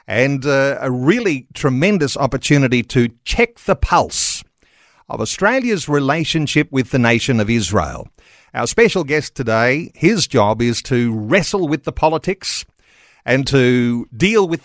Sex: male